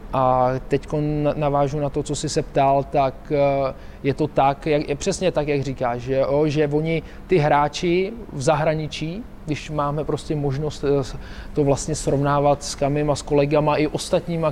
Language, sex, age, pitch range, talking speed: Czech, male, 20-39, 145-175 Hz, 170 wpm